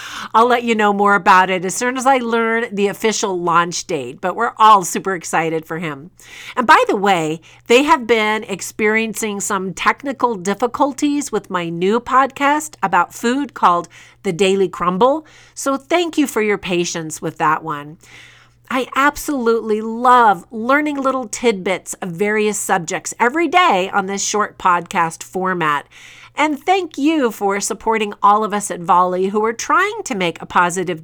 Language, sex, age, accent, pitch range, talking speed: English, female, 50-69, American, 175-255 Hz, 165 wpm